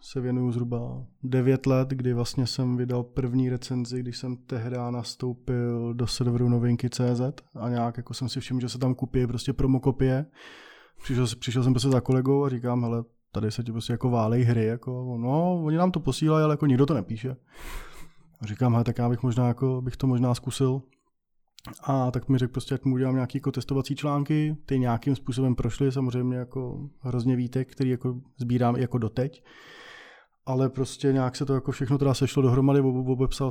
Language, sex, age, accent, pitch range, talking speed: Czech, male, 20-39, native, 120-130 Hz, 190 wpm